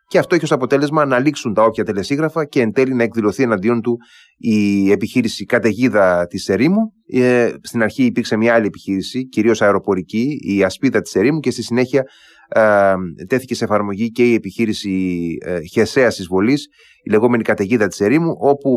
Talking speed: 165 wpm